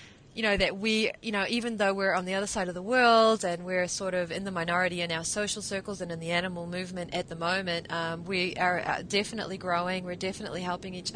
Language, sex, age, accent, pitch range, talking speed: English, female, 20-39, Australian, 175-210 Hz, 235 wpm